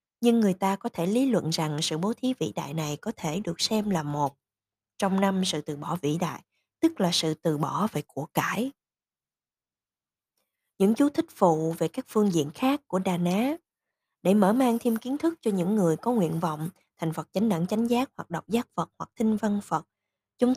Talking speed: 215 wpm